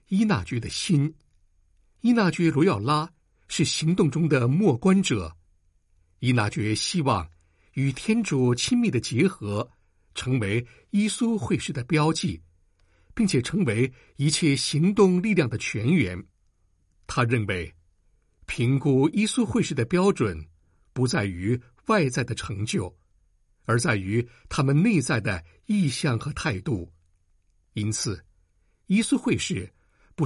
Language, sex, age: Chinese, male, 60-79